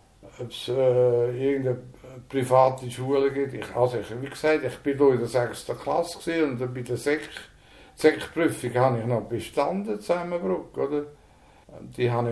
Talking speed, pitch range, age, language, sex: 140 wpm, 120-140 Hz, 60-79, German, male